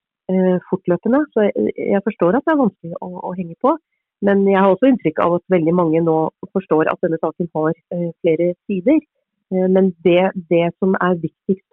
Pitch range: 175-215 Hz